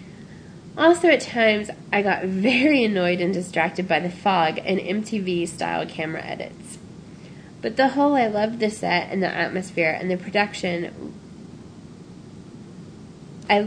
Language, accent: English, American